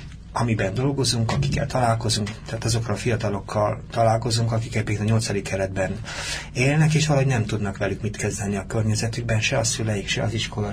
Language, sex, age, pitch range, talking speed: Hungarian, male, 30-49, 110-135 Hz, 170 wpm